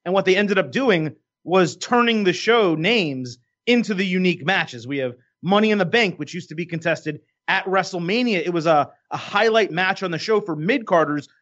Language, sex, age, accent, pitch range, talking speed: English, male, 30-49, American, 155-195 Hz, 205 wpm